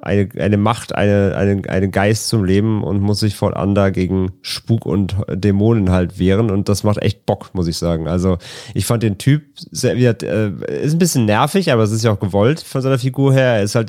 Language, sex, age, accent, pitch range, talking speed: German, male, 30-49, German, 100-120 Hz, 210 wpm